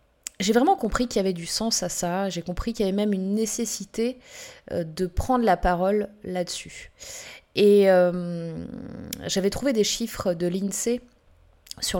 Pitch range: 180-225 Hz